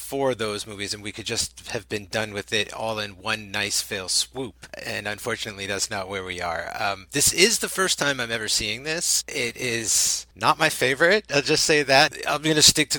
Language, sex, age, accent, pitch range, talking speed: English, male, 30-49, American, 110-140 Hz, 225 wpm